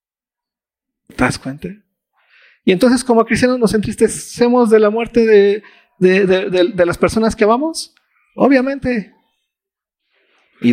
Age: 40-59